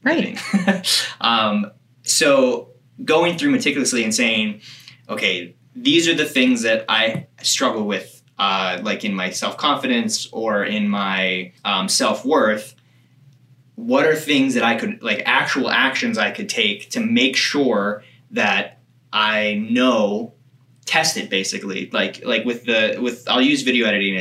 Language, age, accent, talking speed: English, 20-39, American, 140 wpm